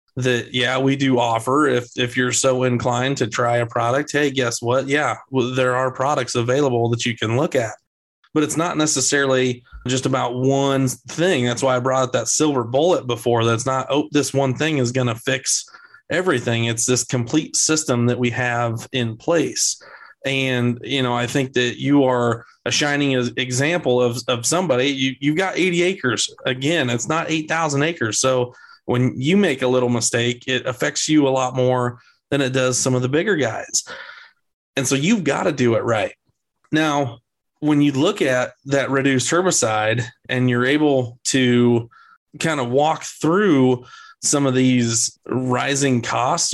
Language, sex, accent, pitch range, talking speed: English, male, American, 120-140 Hz, 180 wpm